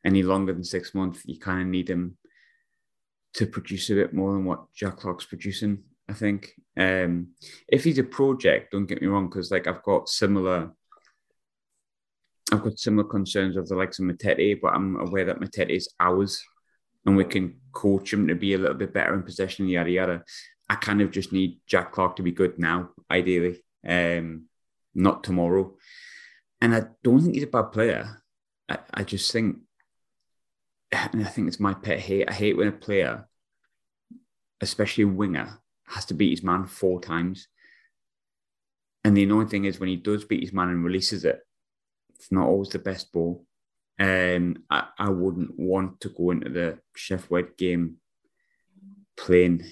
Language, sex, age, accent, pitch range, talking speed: English, male, 30-49, British, 90-105 Hz, 180 wpm